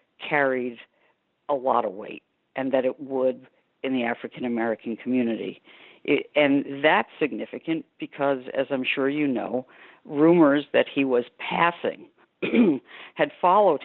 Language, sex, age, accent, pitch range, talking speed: English, female, 50-69, American, 125-145 Hz, 125 wpm